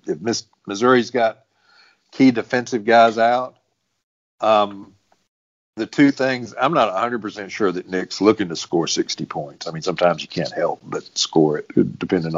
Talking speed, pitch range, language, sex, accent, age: 155 wpm, 90-115 Hz, English, male, American, 50-69